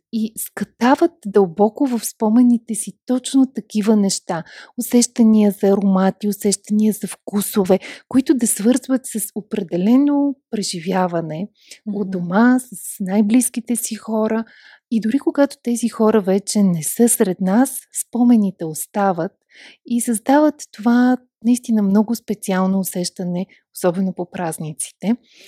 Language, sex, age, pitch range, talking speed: Bulgarian, female, 30-49, 190-240 Hz, 115 wpm